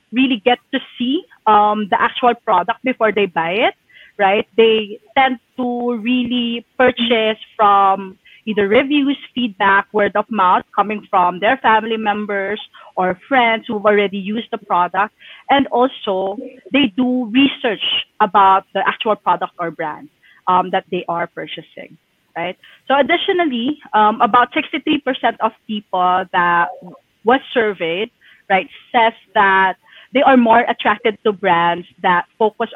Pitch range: 195-240 Hz